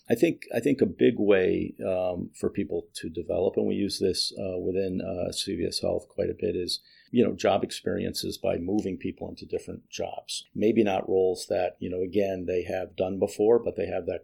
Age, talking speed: 50-69, 210 wpm